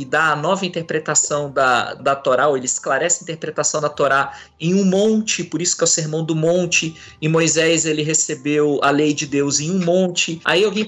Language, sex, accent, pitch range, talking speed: Portuguese, male, Brazilian, 155-200 Hz, 215 wpm